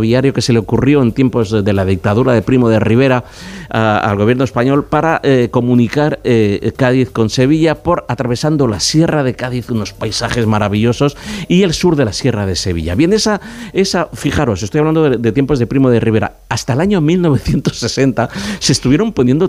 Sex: male